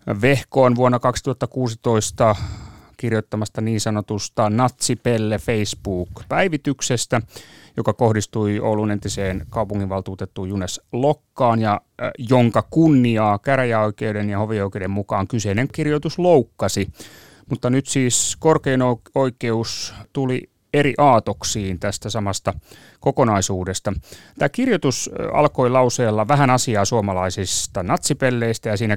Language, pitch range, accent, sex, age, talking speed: Finnish, 100-125 Hz, native, male, 30-49, 95 wpm